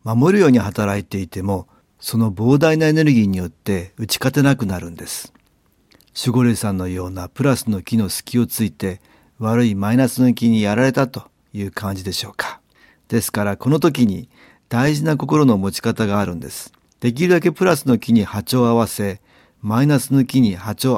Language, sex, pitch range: Japanese, male, 100-135 Hz